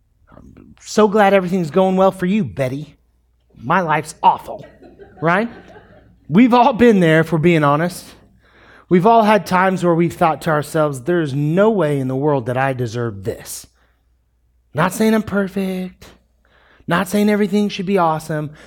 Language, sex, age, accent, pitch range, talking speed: English, male, 30-49, American, 145-190 Hz, 160 wpm